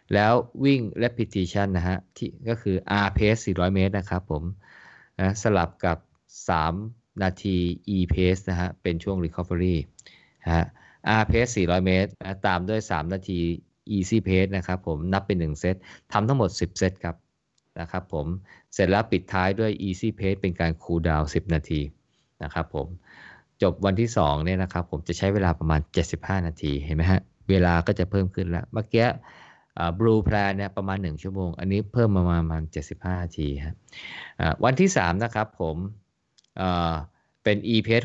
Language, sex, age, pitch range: Thai, male, 20-39, 85-100 Hz